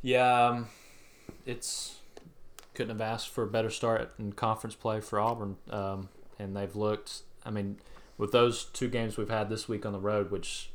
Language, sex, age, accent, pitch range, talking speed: English, male, 20-39, American, 100-110 Hz, 195 wpm